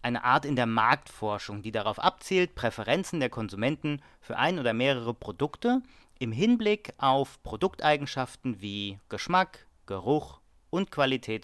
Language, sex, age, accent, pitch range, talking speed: German, male, 40-59, German, 110-150 Hz, 130 wpm